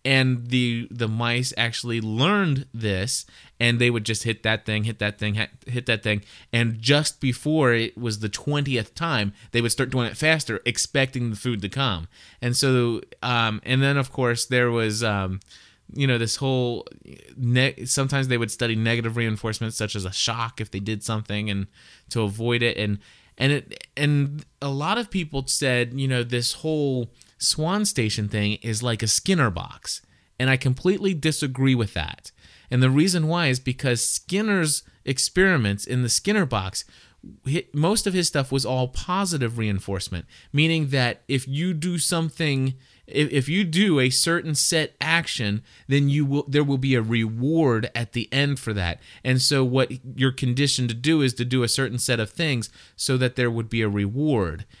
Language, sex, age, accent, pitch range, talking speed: English, male, 20-39, American, 115-140 Hz, 185 wpm